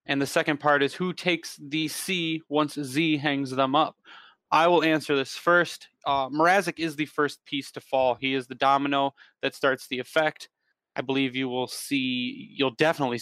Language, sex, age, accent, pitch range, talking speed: English, male, 20-39, American, 130-155 Hz, 190 wpm